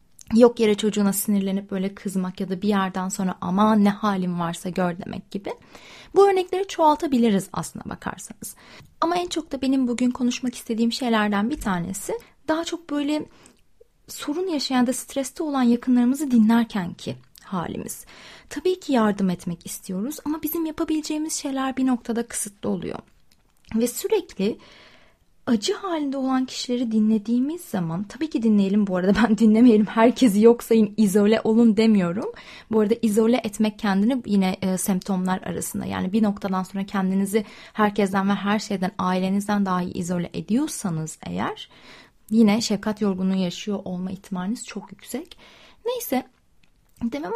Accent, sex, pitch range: native, female, 195-260 Hz